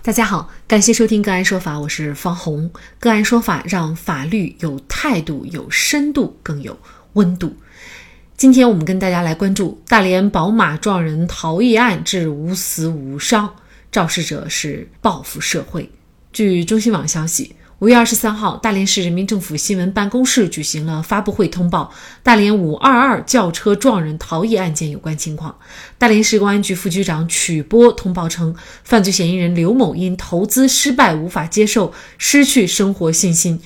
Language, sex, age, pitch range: Chinese, female, 30-49, 170-225 Hz